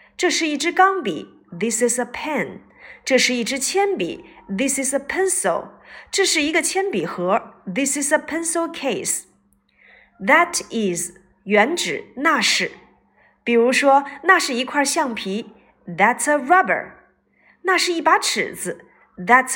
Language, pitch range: Chinese, 210-340 Hz